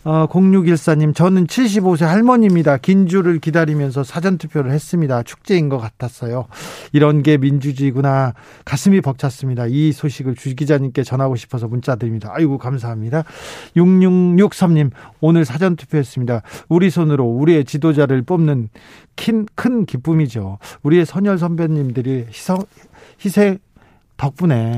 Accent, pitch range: native, 135-185 Hz